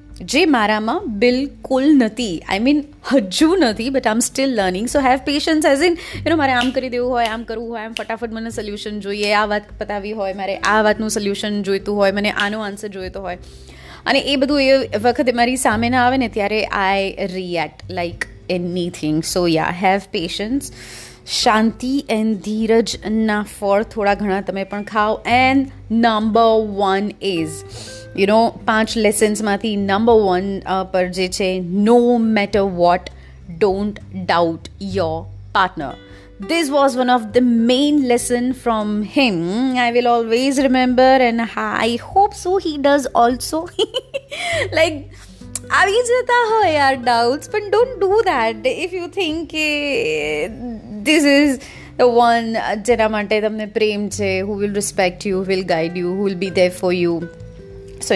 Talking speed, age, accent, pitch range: 150 wpm, 30-49, native, 195-255 Hz